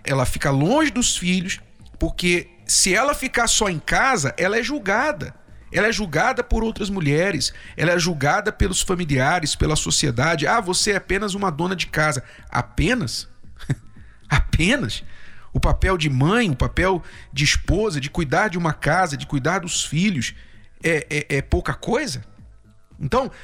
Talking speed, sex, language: 155 wpm, male, Portuguese